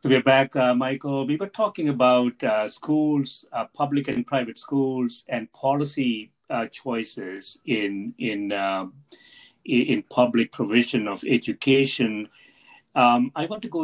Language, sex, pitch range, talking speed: English, male, 120-140 Hz, 145 wpm